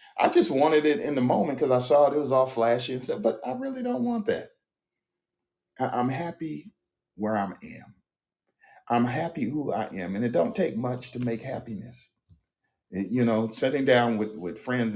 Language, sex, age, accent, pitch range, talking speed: English, male, 40-59, American, 95-125 Hz, 195 wpm